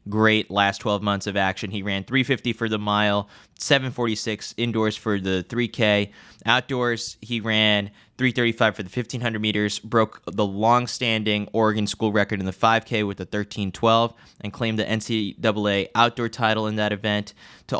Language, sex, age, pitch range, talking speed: English, male, 20-39, 105-120 Hz, 160 wpm